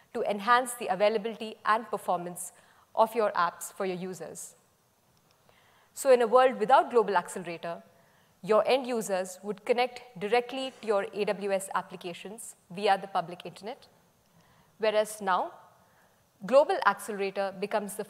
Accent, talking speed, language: Indian, 130 wpm, English